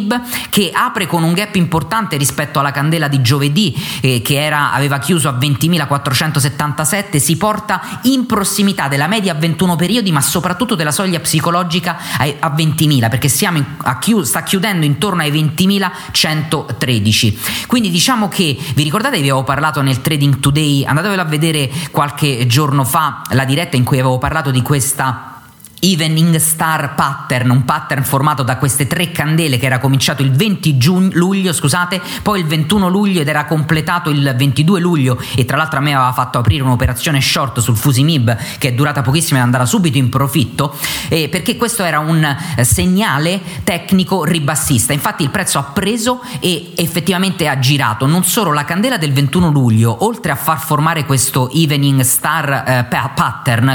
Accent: native